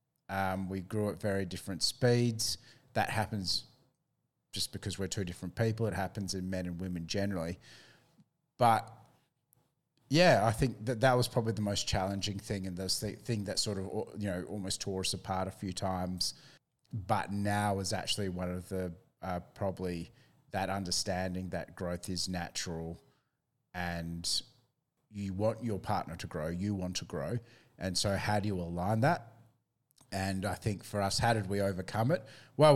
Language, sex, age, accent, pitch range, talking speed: English, male, 30-49, Australian, 95-115 Hz, 170 wpm